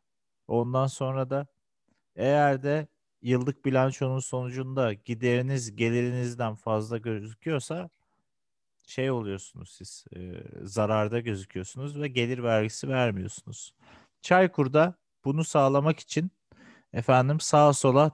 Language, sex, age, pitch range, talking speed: Turkish, male, 40-59, 105-135 Hz, 100 wpm